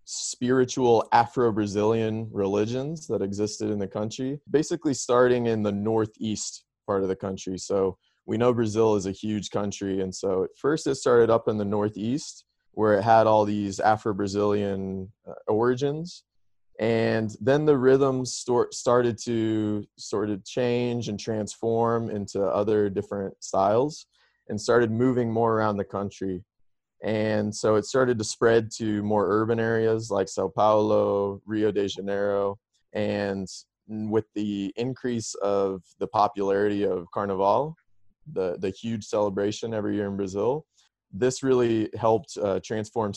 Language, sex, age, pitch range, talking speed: English, male, 20-39, 100-115 Hz, 140 wpm